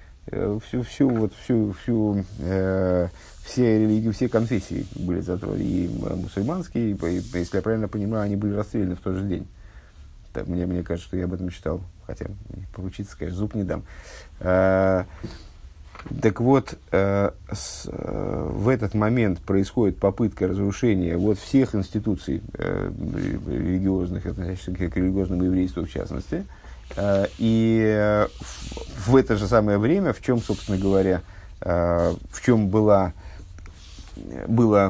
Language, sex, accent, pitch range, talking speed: Russian, male, native, 90-105 Hz, 135 wpm